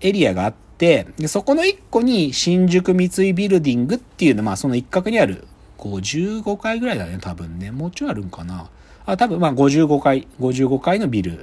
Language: Japanese